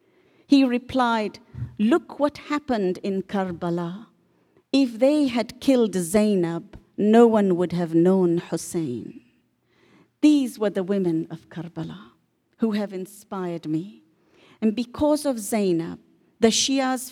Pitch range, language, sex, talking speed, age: 170-245 Hz, English, female, 120 wpm, 50-69